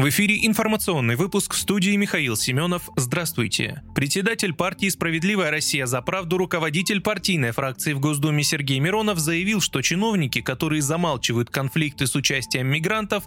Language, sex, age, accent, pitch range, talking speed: Russian, male, 20-39, native, 140-190 Hz, 140 wpm